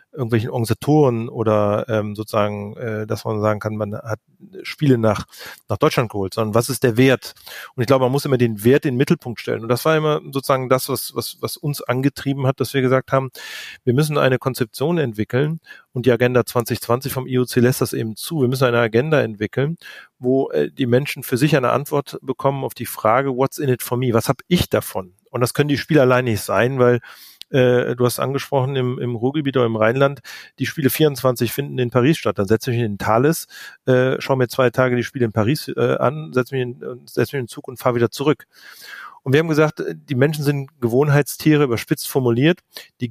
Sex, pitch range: male, 120-140 Hz